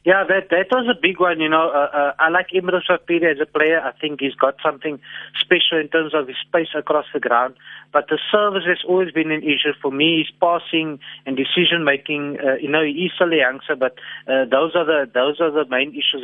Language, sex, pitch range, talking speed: English, male, 140-170 Hz, 230 wpm